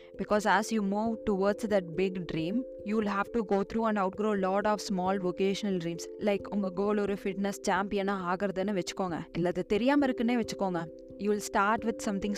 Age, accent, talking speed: 20-39, native, 200 wpm